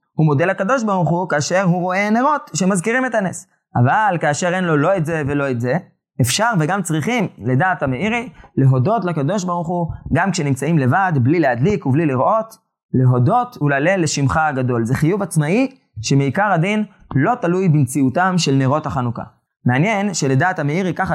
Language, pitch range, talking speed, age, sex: Hebrew, 140-185 Hz, 160 wpm, 20-39, male